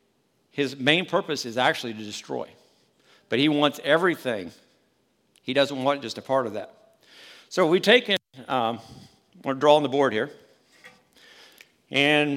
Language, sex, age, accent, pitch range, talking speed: English, male, 50-69, American, 125-150 Hz, 155 wpm